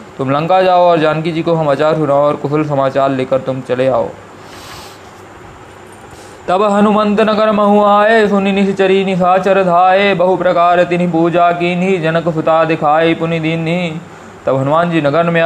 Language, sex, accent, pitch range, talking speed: Hindi, male, native, 150-185 Hz, 155 wpm